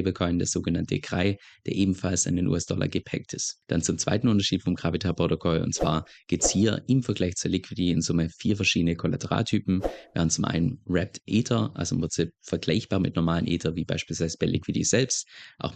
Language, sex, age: German, male, 20-39